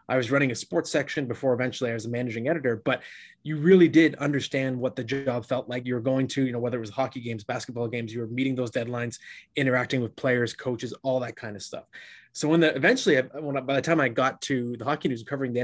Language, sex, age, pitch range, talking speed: English, male, 20-39, 115-140 Hz, 245 wpm